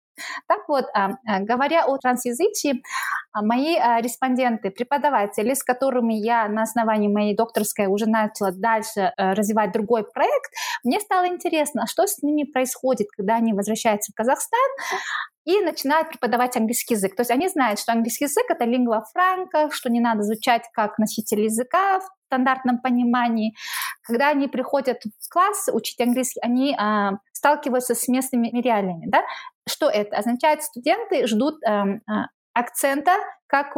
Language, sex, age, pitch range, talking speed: Russian, female, 20-39, 225-285 Hz, 145 wpm